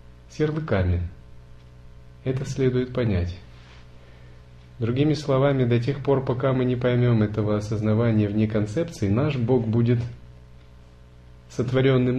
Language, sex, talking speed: Russian, male, 105 wpm